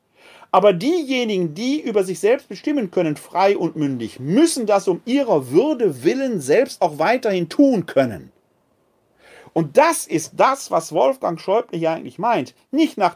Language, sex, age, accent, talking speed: German, male, 40-59, German, 155 wpm